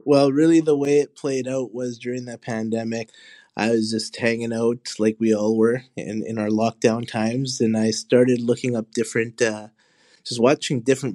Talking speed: 190 wpm